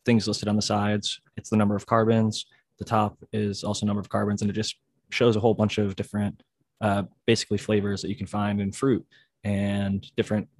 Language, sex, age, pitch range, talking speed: English, male, 20-39, 100-115 Hz, 210 wpm